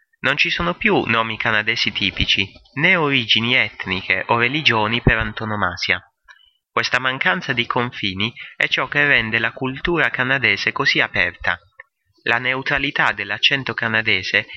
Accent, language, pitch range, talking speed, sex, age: Italian, English, 105-140 Hz, 130 wpm, male, 30-49